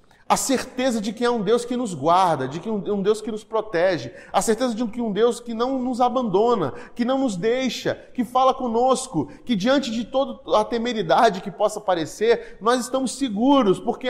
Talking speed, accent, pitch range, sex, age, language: 215 wpm, Brazilian, 205-260 Hz, male, 20-39, Portuguese